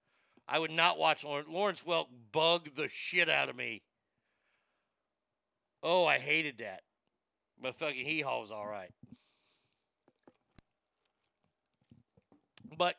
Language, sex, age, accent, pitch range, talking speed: English, male, 50-69, American, 145-170 Hz, 105 wpm